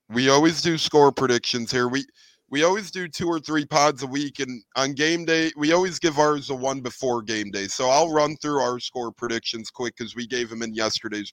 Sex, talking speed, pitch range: male, 230 wpm, 115-145 Hz